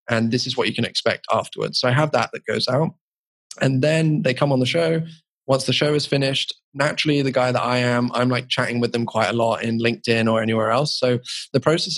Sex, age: male, 20-39